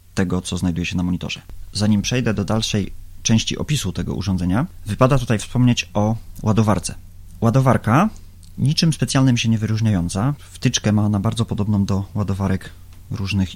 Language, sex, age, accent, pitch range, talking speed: Polish, male, 30-49, native, 90-115 Hz, 145 wpm